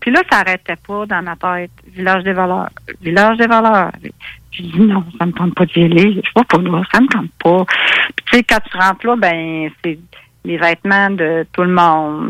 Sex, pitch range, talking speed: female, 175-245 Hz, 245 wpm